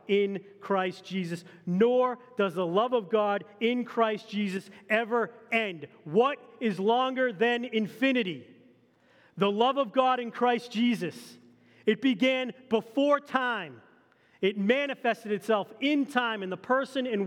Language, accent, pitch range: English, American, 165-235 Hz